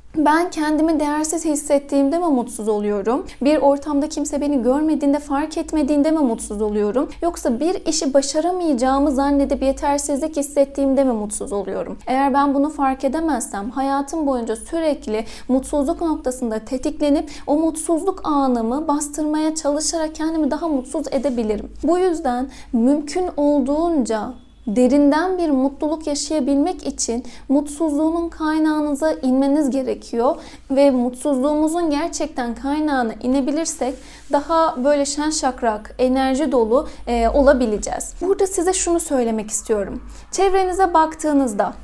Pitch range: 260-315 Hz